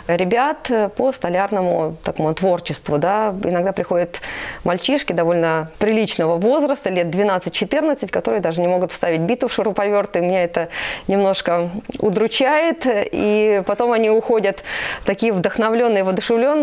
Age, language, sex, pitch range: 20-39, Russian, female, 180-220 Hz